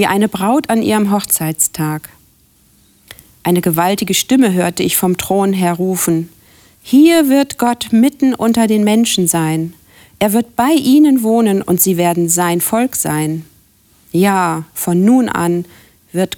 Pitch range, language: 165-210 Hz, German